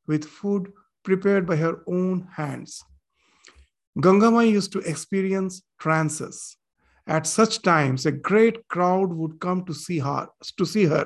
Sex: male